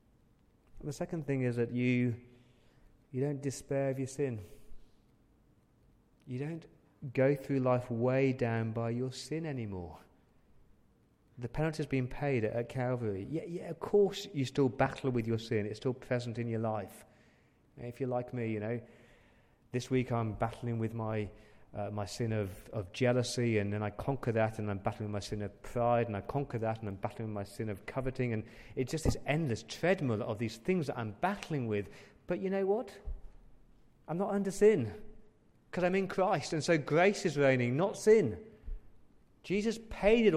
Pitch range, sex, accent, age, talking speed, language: 110-150 Hz, male, British, 30-49, 180 wpm, English